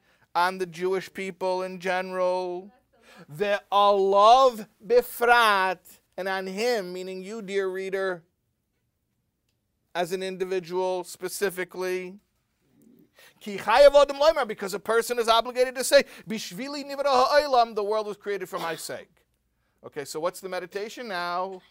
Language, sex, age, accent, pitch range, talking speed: English, male, 50-69, American, 170-215 Hz, 110 wpm